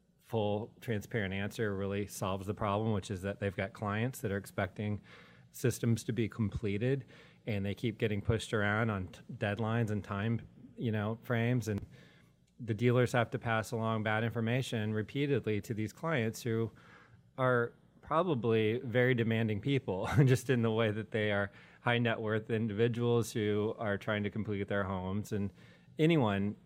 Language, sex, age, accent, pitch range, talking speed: English, male, 30-49, American, 100-115 Hz, 160 wpm